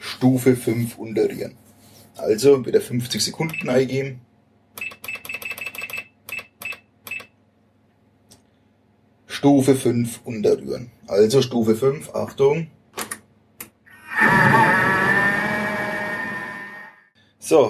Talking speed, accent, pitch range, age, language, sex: 55 wpm, German, 110-130 Hz, 30-49, German, male